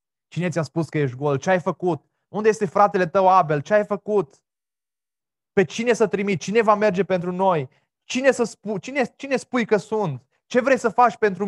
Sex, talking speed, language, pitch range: male, 190 wpm, Romanian, 120-160 Hz